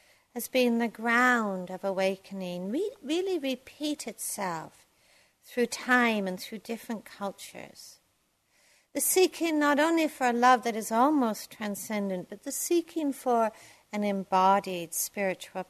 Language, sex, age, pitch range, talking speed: English, female, 60-79, 195-255 Hz, 130 wpm